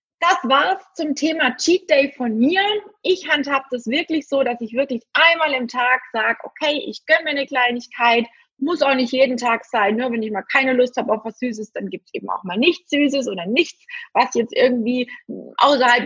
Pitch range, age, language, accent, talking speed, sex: 230-285 Hz, 20-39, German, German, 210 wpm, female